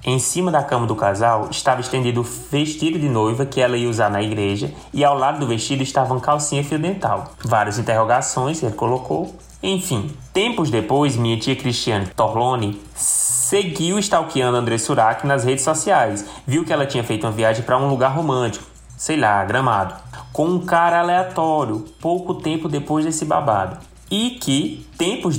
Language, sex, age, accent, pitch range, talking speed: Portuguese, male, 20-39, Brazilian, 120-160 Hz, 175 wpm